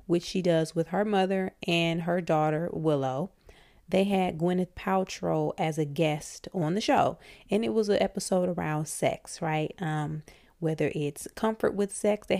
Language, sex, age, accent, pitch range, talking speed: English, female, 30-49, American, 165-200 Hz, 170 wpm